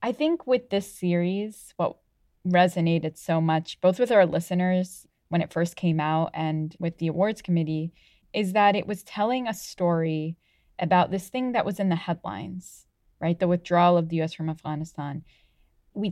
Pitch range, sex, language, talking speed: 160-185 Hz, female, English, 175 wpm